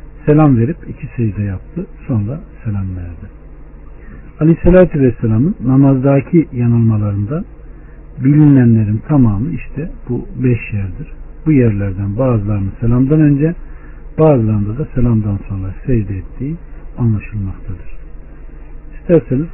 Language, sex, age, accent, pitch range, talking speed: Turkish, male, 60-79, native, 110-150 Hz, 100 wpm